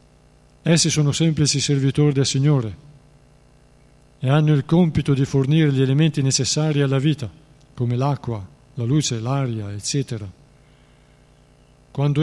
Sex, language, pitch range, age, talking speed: male, Italian, 120-145 Hz, 50-69, 120 wpm